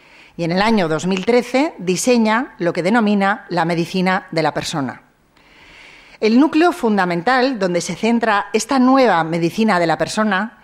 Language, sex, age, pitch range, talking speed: Spanish, female, 40-59, 175-245 Hz, 145 wpm